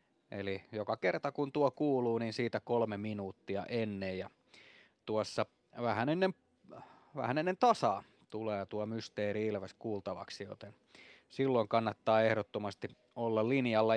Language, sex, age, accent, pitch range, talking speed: Finnish, male, 30-49, native, 110-135 Hz, 125 wpm